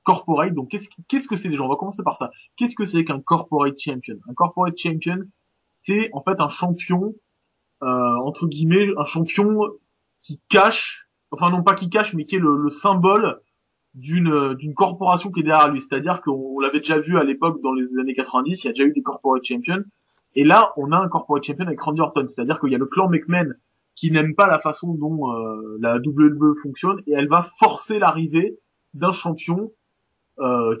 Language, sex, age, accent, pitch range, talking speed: French, male, 20-39, French, 140-190 Hz, 205 wpm